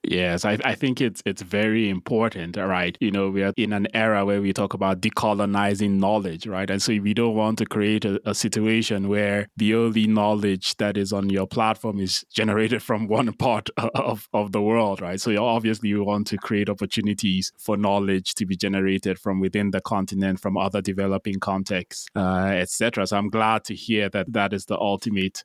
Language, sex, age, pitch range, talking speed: English, male, 20-39, 100-115 Hz, 200 wpm